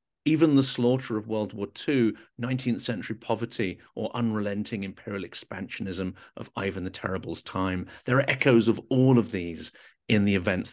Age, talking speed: 50-69, 160 wpm